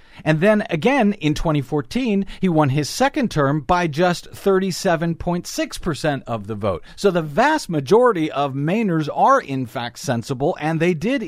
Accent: American